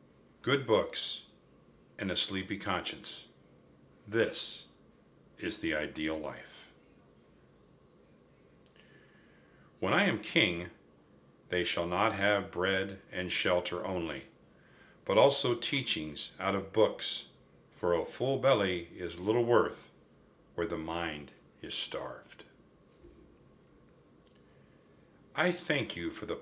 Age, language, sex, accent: 50-69, English, male, American